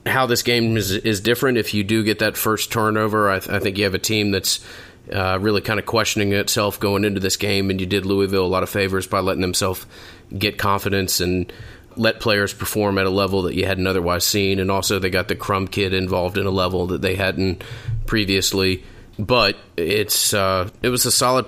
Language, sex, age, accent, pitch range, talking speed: English, male, 30-49, American, 95-110 Hz, 220 wpm